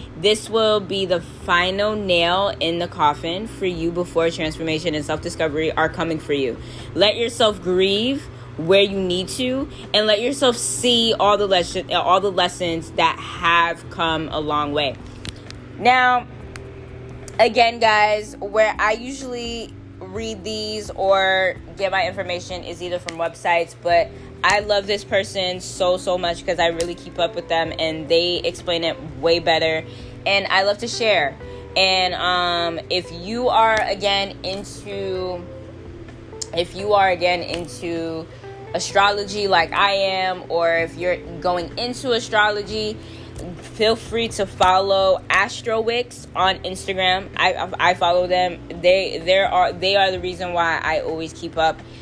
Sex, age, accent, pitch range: female, 10-29, American, 155-195 Hz